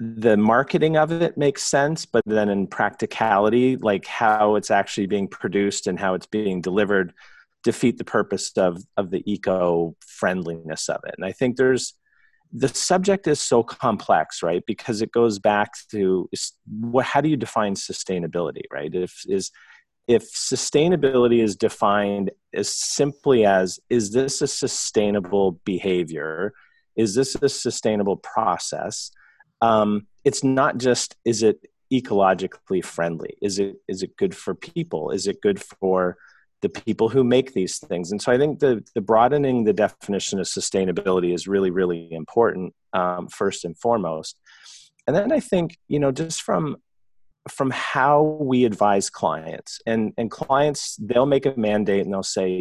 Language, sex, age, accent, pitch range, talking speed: English, male, 40-59, American, 95-135 Hz, 160 wpm